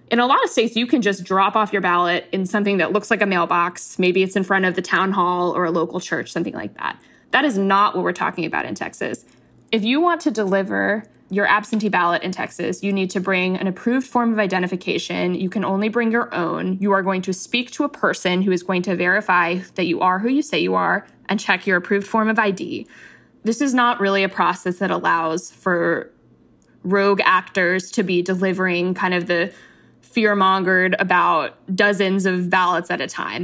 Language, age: English, 20-39